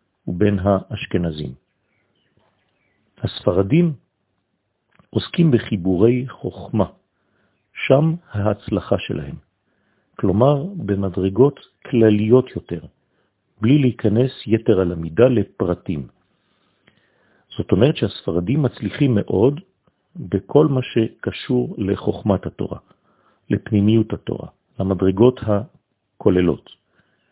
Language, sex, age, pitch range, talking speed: French, male, 50-69, 95-125 Hz, 70 wpm